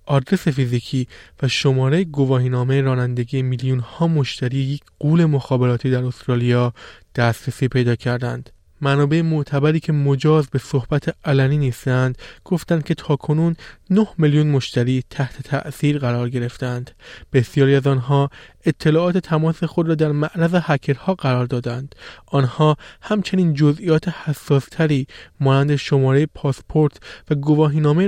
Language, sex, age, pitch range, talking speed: Persian, male, 20-39, 135-160 Hz, 125 wpm